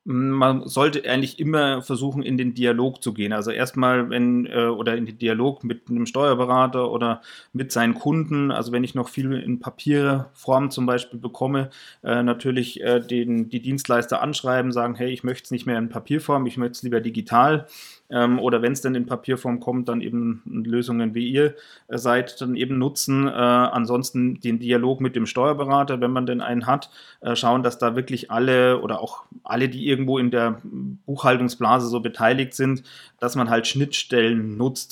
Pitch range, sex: 120-130 Hz, male